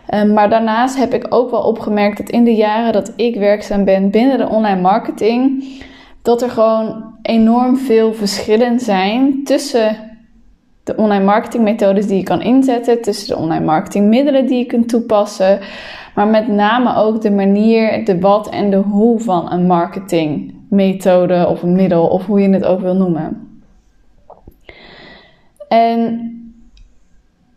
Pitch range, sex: 200-235 Hz, female